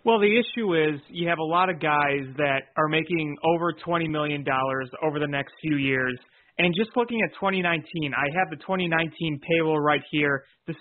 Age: 30-49